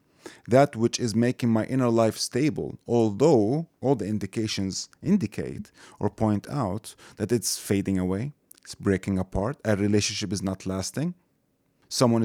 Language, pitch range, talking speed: English, 105-130 Hz, 140 wpm